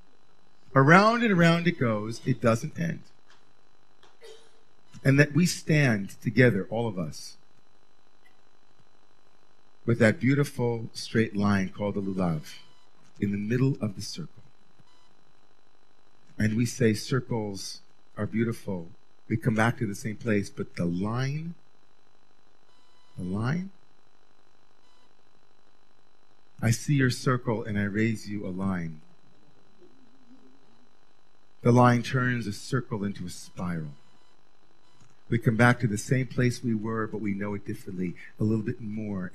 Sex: male